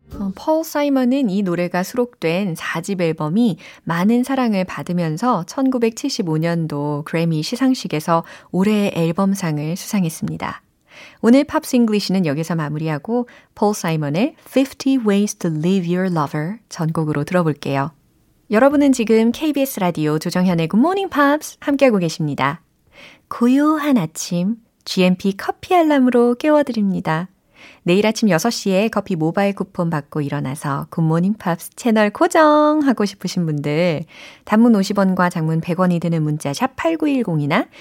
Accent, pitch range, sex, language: native, 165-245 Hz, female, Korean